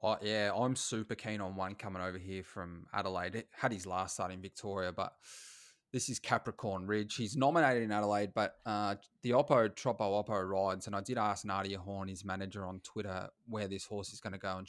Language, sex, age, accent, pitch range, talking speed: English, male, 20-39, Australian, 95-115 Hz, 215 wpm